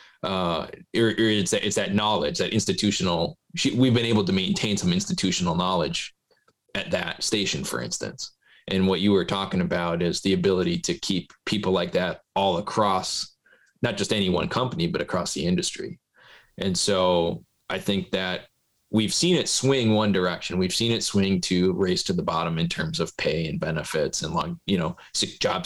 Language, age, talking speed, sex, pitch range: English, 20-39, 180 wpm, male, 95-130 Hz